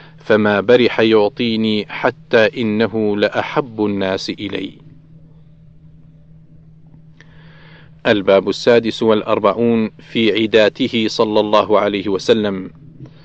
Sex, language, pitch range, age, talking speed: male, Arabic, 110-130 Hz, 40-59, 75 wpm